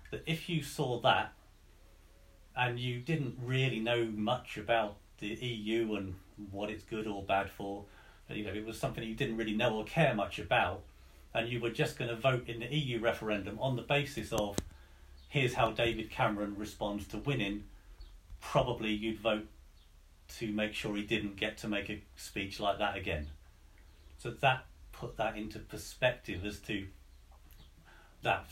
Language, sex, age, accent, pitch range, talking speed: English, male, 40-59, British, 95-115 Hz, 175 wpm